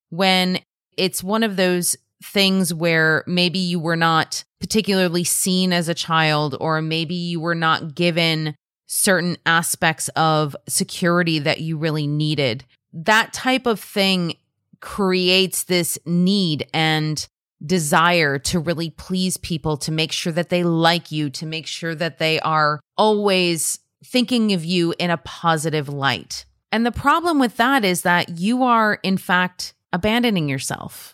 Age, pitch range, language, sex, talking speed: 30-49, 165-205 Hz, English, female, 150 wpm